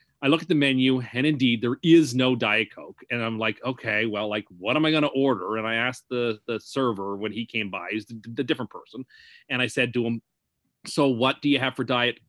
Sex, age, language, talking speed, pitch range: male, 30-49, English, 245 wpm, 115-150 Hz